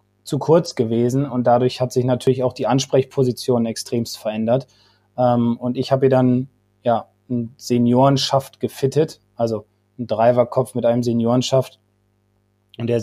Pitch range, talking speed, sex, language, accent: 120-140 Hz, 145 wpm, male, German, German